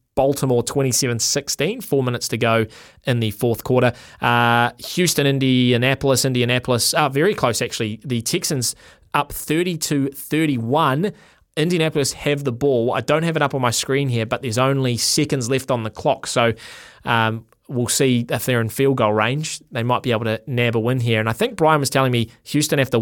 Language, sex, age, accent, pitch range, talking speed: English, male, 20-39, Australian, 115-135 Hz, 190 wpm